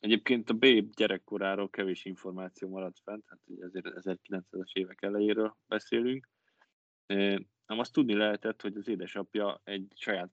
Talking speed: 140 wpm